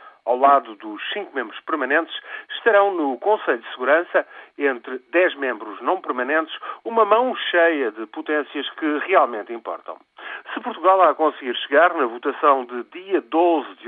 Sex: male